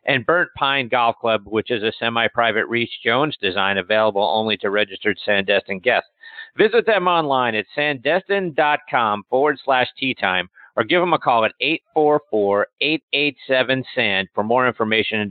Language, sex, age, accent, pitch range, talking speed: English, male, 50-69, American, 120-170 Hz, 145 wpm